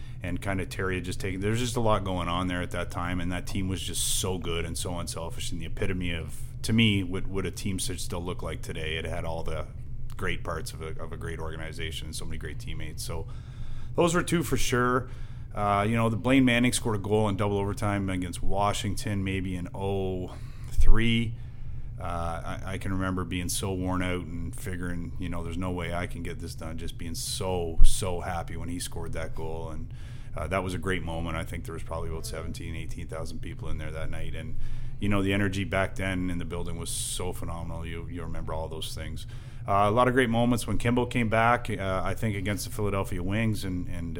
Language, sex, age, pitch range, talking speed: English, male, 30-49, 90-115 Hz, 235 wpm